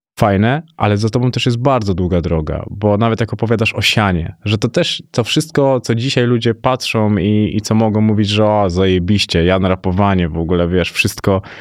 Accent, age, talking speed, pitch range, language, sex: native, 20-39, 195 wpm, 95-110 Hz, Polish, male